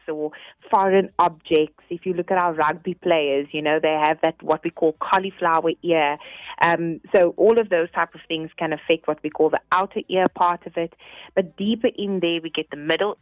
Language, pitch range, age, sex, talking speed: English, 160-195 Hz, 20-39, female, 215 wpm